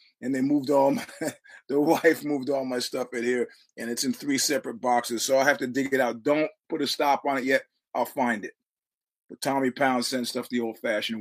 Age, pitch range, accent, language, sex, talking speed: 30-49, 120-160 Hz, American, English, male, 225 wpm